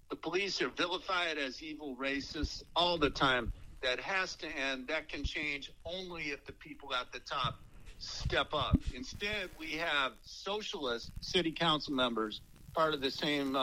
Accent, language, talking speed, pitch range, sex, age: American, English, 165 wpm, 135-175 Hz, male, 50-69